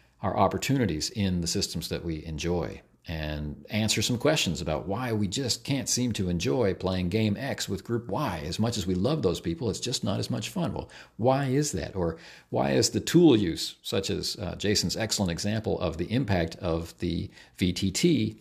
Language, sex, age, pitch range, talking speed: English, male, 50-69, 80-110 Hz, 200 wpm